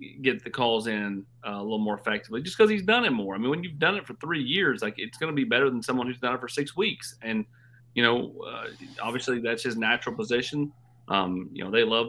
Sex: male